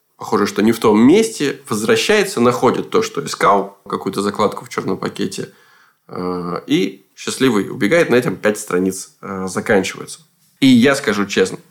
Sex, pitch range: male, 105-145 Hz